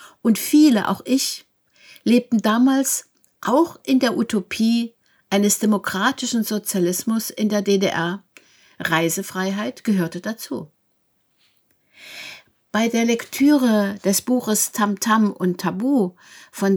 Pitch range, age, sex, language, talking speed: 195-240 Hz, 60-79, female, German, 100 wpm